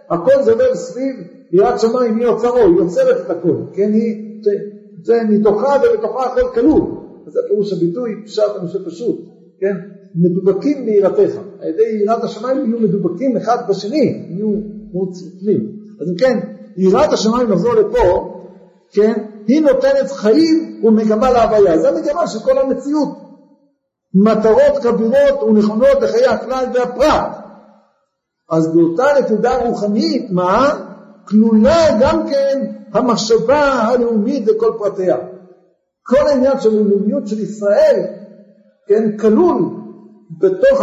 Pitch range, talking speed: 195-270 Hz, 120 wpm